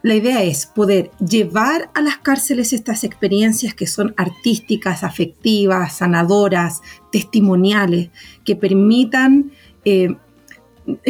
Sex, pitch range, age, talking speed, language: female, 190-270 Hz, 40-59, 105 wpm, Spanish